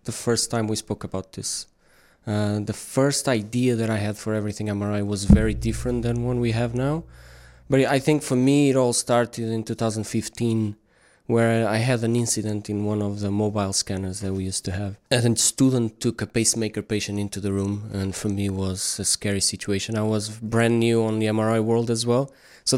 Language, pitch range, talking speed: English, 105-125 Hz, 210 wpm